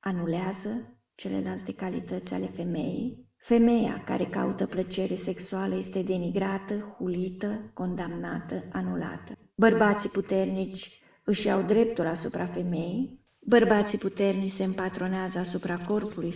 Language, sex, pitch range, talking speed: Romanian, female, 175-215 Hz, 105 wpm